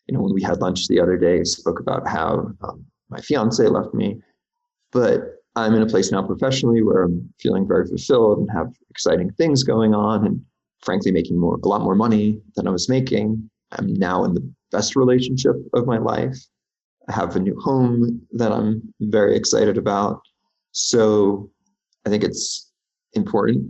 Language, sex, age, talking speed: English, male, 30-49, 180 wpm